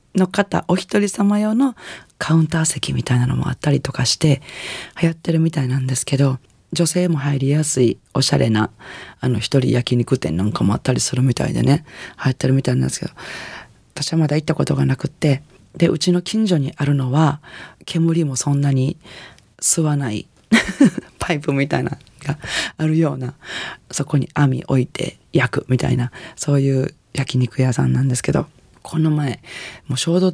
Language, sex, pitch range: Japanese, female, 130-165 Hz